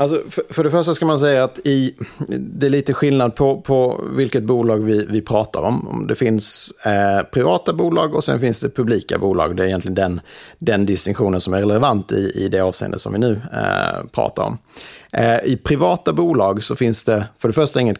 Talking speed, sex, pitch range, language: 190 wpm, male, 100-125 Hz, Swedish